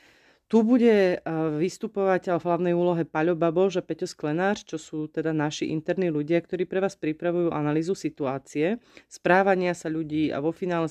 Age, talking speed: 30-49, 160 wpm